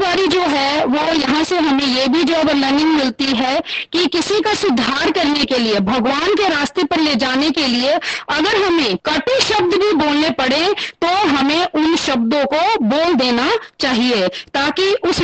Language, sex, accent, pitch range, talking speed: Hindi, female, native, 275-335 Hz, 175 wpm